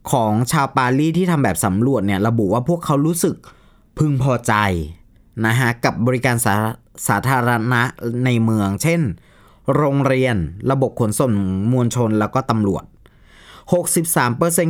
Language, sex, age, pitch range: Thai, male, 20-39, 110-150 Hz